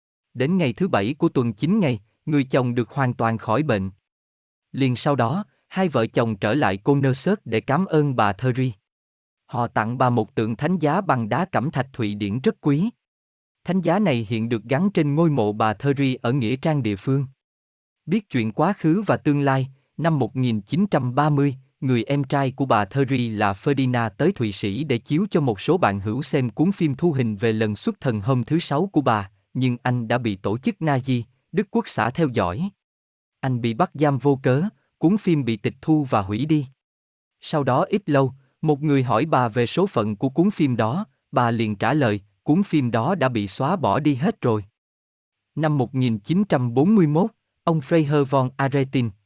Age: 20-39